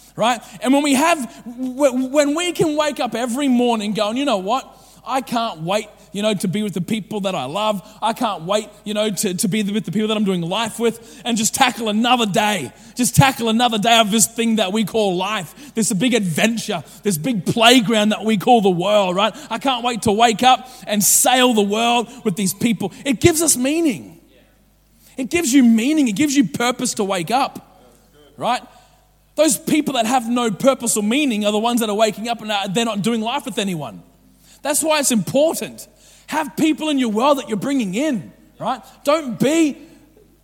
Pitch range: 210-260 Hz